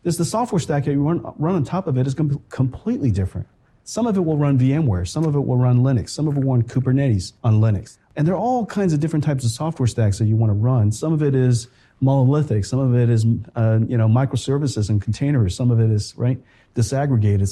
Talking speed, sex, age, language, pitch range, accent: 255 wpm, male, 40-59, English, 110-145 Hz, American